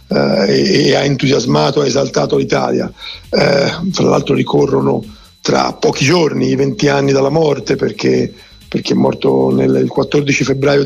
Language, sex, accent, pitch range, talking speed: Italian, male, native, 145-170 Hz, 155 wpm